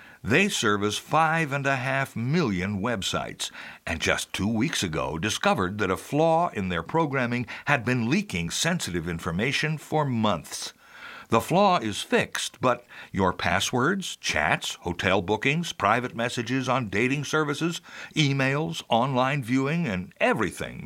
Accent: American